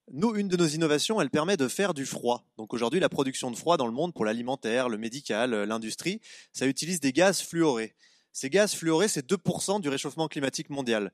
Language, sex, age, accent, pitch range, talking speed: French, male, 20-39, French, 130-180 Hz, 210 wpm